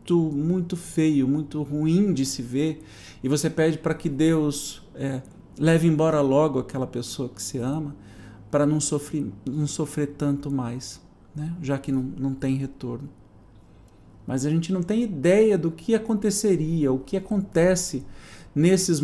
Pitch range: 135-185 Hz